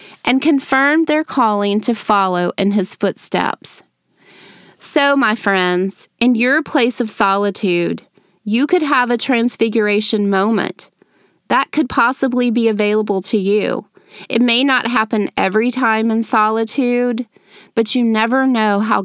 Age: 30-49